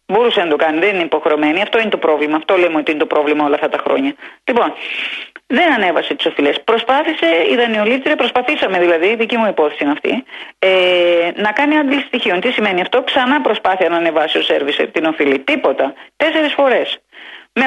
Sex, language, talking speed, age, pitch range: female, Greek, 185 wpm, 30-49, 180-260 Hz